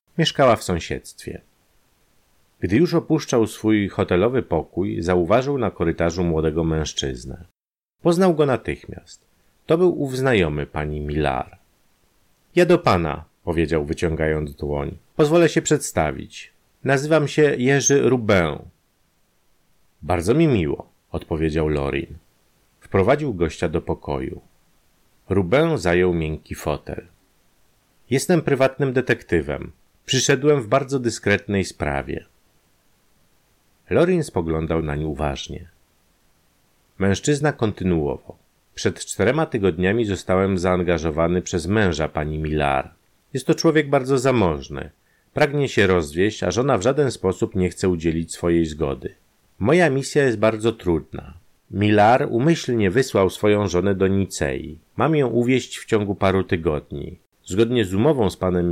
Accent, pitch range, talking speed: native, 85-130 Hz, 120 wpm